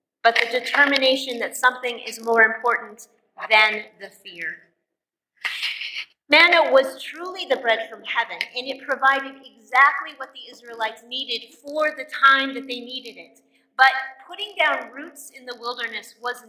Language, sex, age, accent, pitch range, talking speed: English, female, 30-49, American, 230-280 Hz, 150 wpm